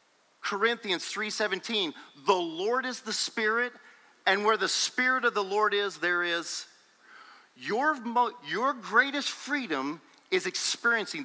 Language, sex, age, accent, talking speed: English, male, 40-59, American, 125 wpm